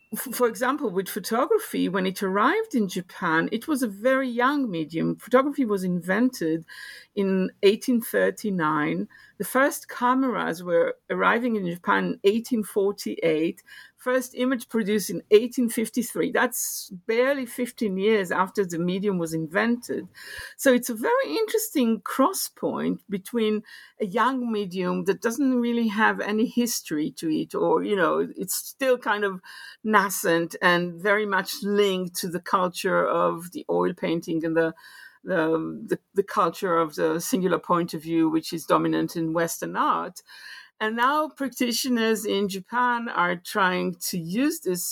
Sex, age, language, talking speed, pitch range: female, 50-69, English, 145 wpm, 180-250 Hz